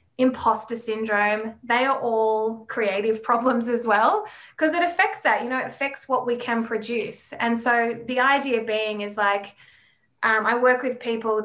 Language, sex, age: English, female, 20-39